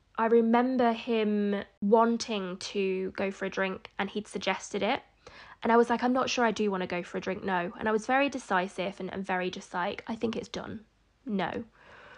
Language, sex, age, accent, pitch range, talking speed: English, female, 20-39, British, 205-245 Hz, 215 wpm